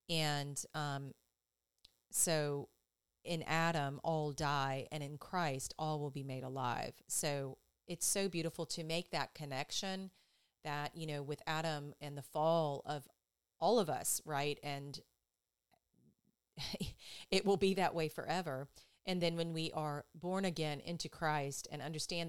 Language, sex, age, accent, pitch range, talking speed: English, female, 40-59, American, 140-165 Hz, 145 wpm